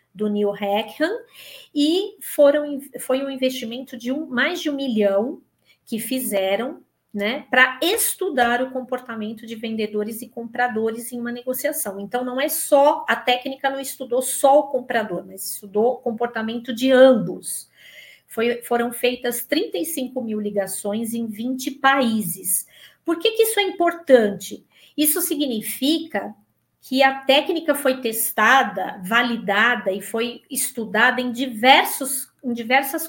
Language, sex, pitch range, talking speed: Portuguese, female, 215-275 Hz, 130 wpm